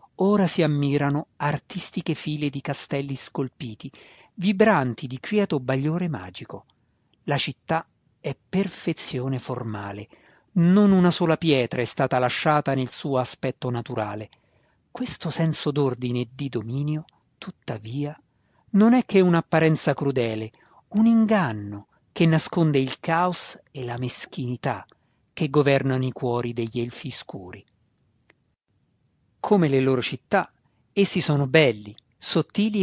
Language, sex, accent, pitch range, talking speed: Italian, male, native, 125-170 Hz, 120 wpm